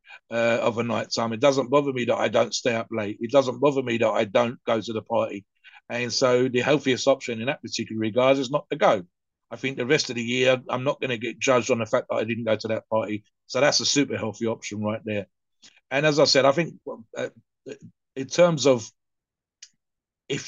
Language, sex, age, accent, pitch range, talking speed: English, male, 50-69, British, 115-145 Hz, 235 wpm